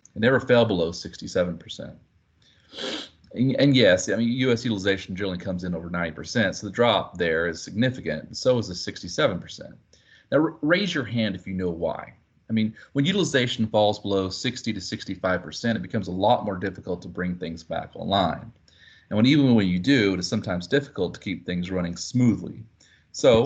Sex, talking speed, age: male, 195 wpm, 30-49